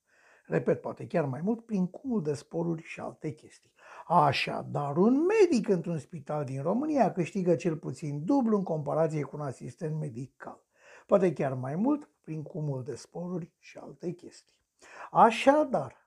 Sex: male